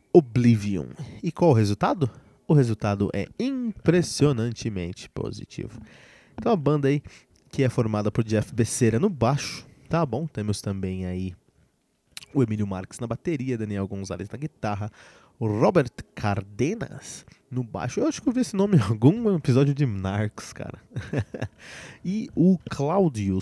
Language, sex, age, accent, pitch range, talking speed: Portuguese, male, 20-39, Brazilian, 105-155 Hz, 145 wpm